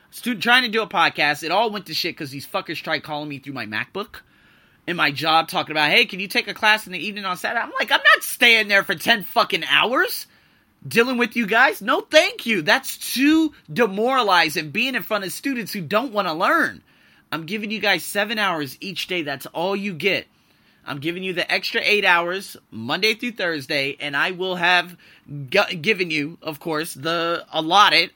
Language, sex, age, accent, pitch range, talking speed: English, male, 30-49, American, 150-210 Hz, 210 wpm